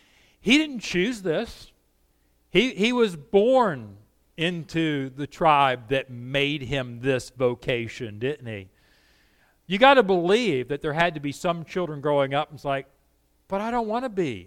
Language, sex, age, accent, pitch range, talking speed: English, male, 50-69, American, 130-180 Hz, 165 wpm